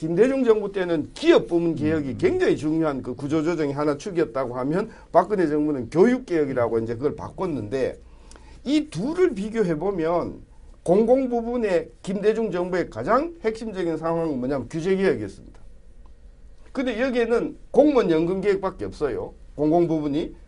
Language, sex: Korean, male